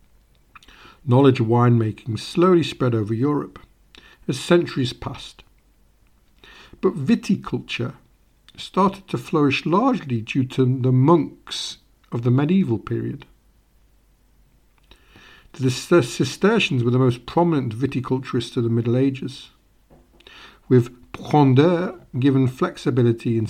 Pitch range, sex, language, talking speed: 120-165 Hz, male, English, 100 wpm